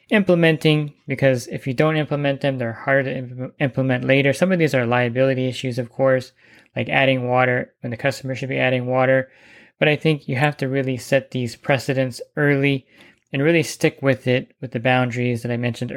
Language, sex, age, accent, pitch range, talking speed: English, male, 20-39, American, 125-140 Hz, 195 wpm